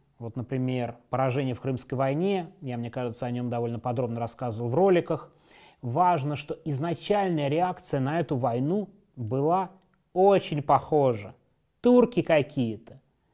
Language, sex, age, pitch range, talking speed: Russian, male, 30-49, 130-170 Hz, 125 wpm